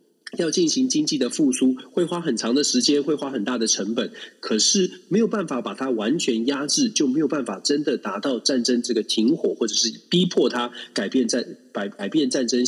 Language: Chinese